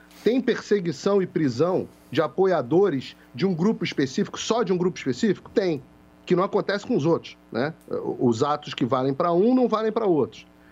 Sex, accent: male, Brazilian